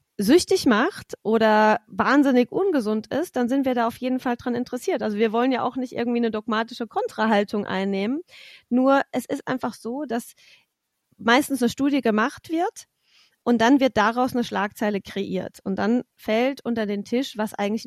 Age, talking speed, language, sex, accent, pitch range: 30-49, 175 wpm, German, female, German, 215-260 Hz